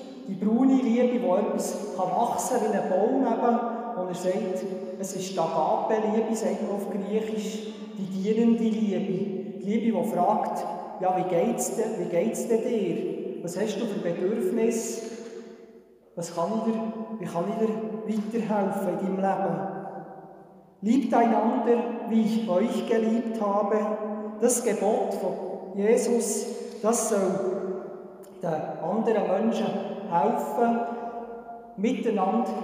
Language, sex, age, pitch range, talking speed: German, male, 40-59, 195-225 Hz, 140 wpm